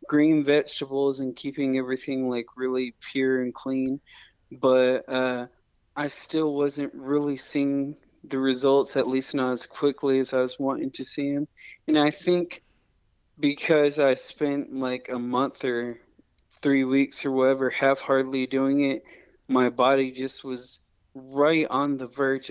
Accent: American